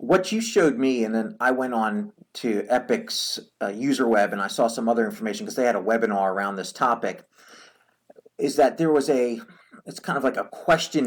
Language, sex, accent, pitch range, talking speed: English, male, American, 115-165 Hz, 210 wpm